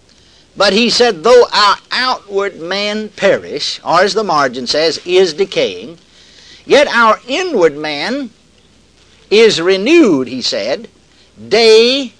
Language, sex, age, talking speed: English, male, 60-79, 120 wpm